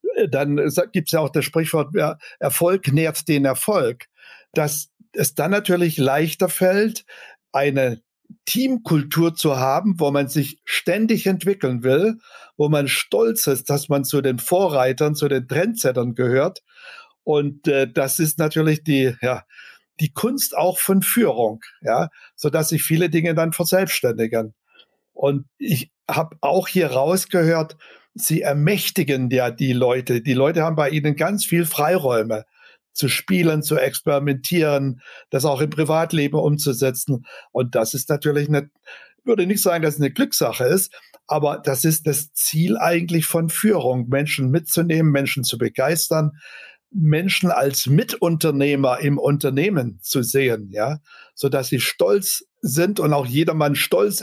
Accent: German